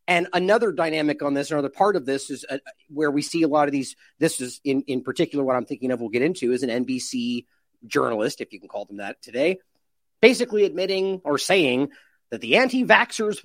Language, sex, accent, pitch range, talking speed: English, male, American, 140-175 Hz, 215 wpm